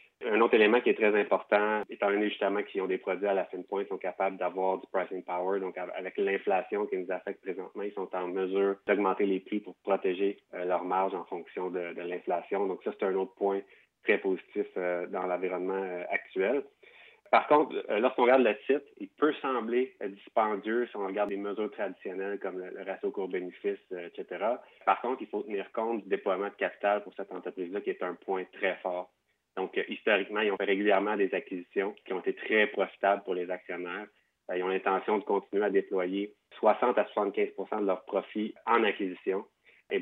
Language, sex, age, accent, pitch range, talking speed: French, male, 30-49, Canadian, 90-110 Hz, 200 wpm